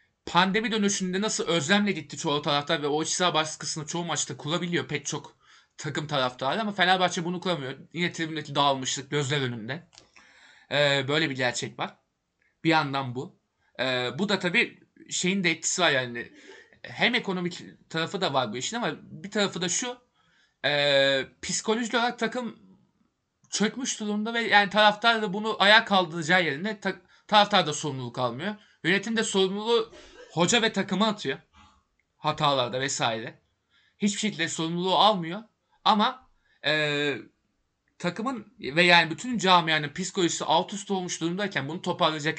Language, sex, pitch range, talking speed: Turkish, male, 150-205 Hz, 140 wpm